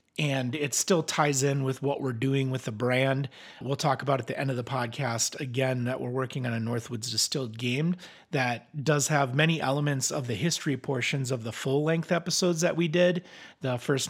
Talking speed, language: 205 wpm, English